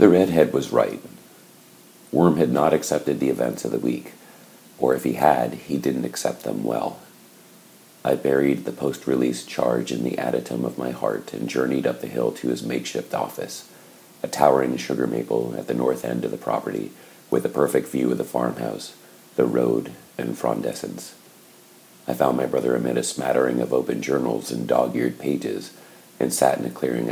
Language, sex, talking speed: English, male, 180 wpm